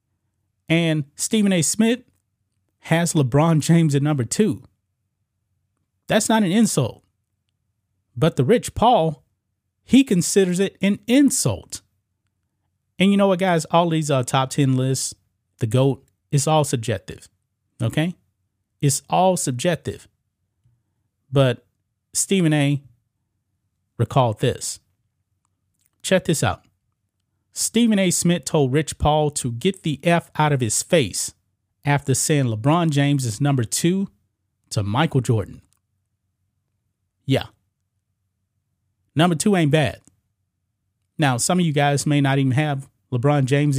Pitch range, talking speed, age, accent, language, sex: 100-155 Hz, 125 wpm, 30-49, American, English, male